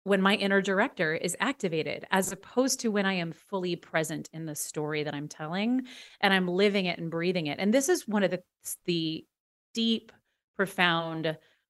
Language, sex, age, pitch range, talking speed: English, female, 30-49, 165-215 Hz, 185 wpm